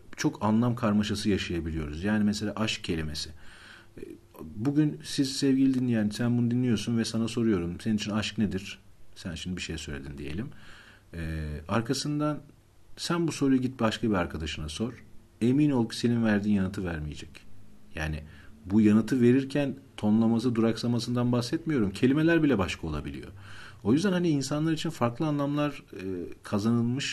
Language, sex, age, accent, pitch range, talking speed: Turkish, male, 50-69, native, 95-125 Hz, 145 wpm